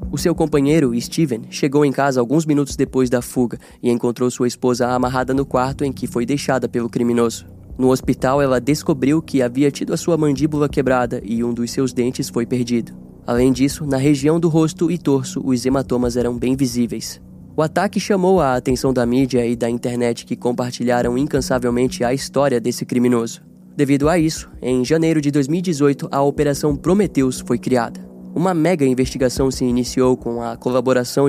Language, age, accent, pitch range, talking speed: Portuguese, 10-29, Brazilian, 120-145 Hz, 180 wpm